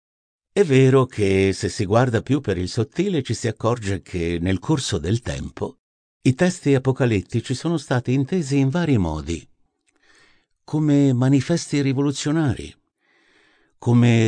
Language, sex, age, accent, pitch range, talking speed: Italian, male, 60-79, native, 100-140 Hz, 130 wpm